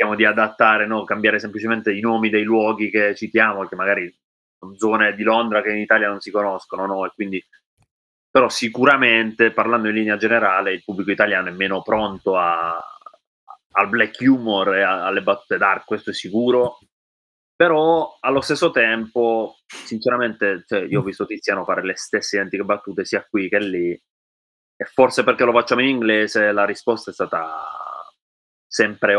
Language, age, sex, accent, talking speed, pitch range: Italian, 30-49, male, native, 170 wpm, 100-120 Hz